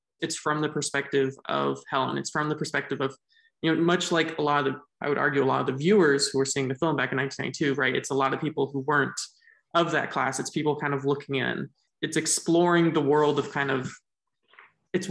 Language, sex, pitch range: English, male, 140-160 Hz